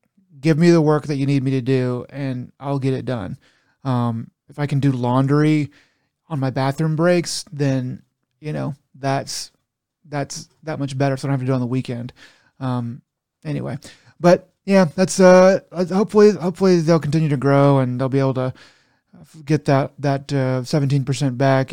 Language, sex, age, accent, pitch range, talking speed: English, male, 30-49, American, 130-150 Hz, 185 wpm